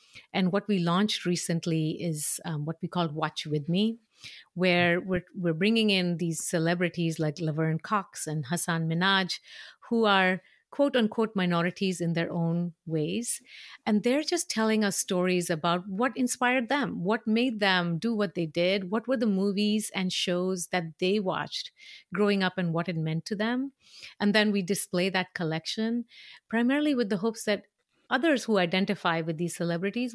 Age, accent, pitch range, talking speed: 50-69, Indian, 175-220 Hz, 170 wpm